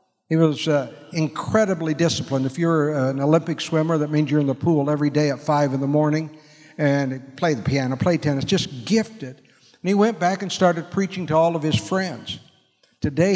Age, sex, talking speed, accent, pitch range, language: 60-79, male, 200 wpm, American, 140-165 Hz, English